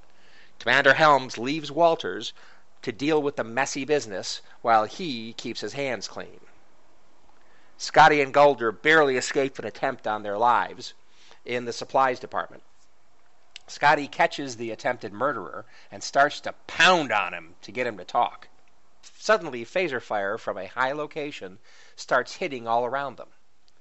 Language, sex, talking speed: English, male, 145 wpm